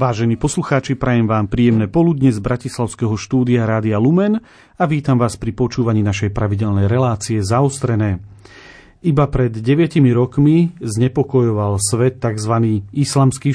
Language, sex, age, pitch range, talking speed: Slovak, male, 40-59, 110-140 Hz, 125 wpm